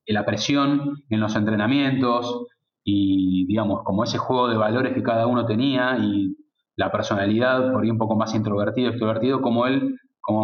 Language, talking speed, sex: Spanish, 170 wpm, male